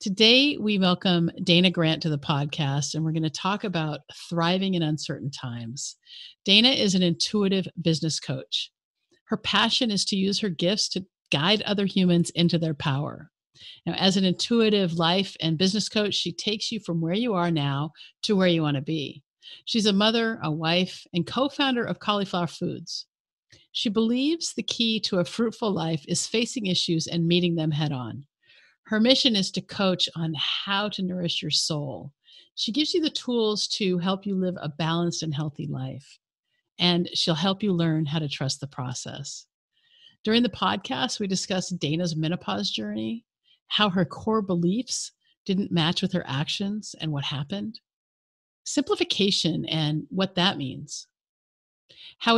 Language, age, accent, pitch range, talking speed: English, 50-69, American, 155-210 Hz, 170 wpm